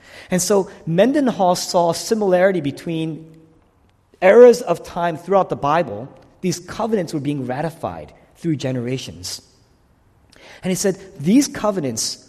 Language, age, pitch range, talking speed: English, 30-49, 130-185 Hz, 120 wpm